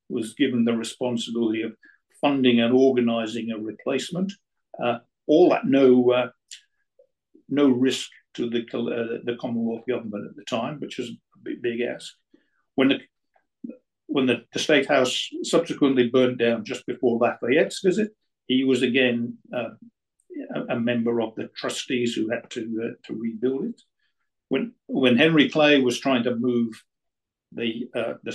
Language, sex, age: English, male, 60-79